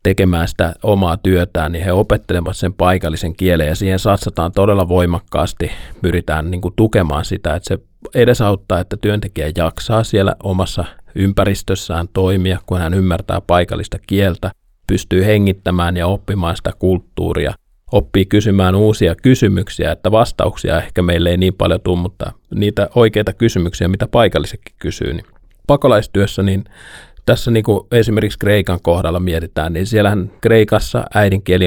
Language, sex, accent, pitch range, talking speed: Finnish, male, native, 85-100 Hz, 140 wpm